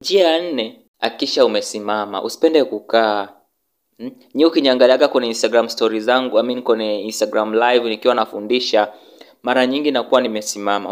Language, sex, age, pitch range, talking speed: Swahili, male, 20-39, 110-135 Hz, 115 wpm